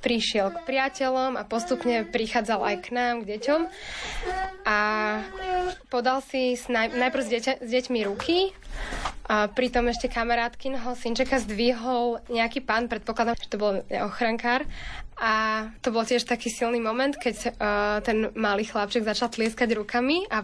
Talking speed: 155 wpm